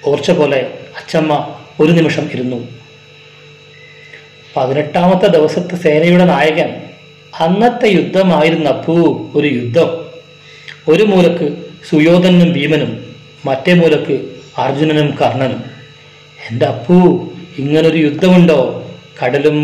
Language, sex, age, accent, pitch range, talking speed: Malayalam, male, 40-59, native, 140-170 Hz, 85 wpm